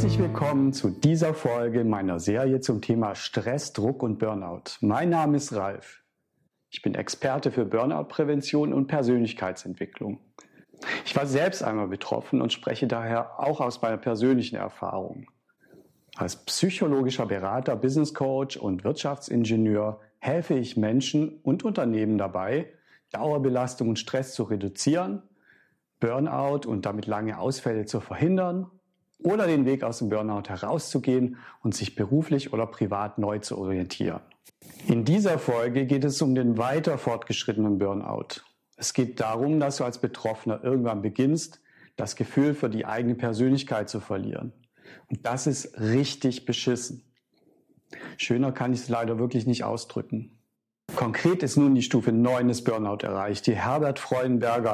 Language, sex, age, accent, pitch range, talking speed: German, male, 50-69, German, 110-135 Hz, 140 wpm